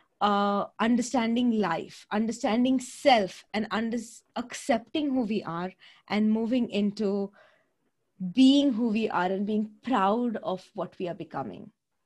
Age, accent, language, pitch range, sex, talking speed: 20-39, Indian, English, 190-240 Hz, female, 130 wpm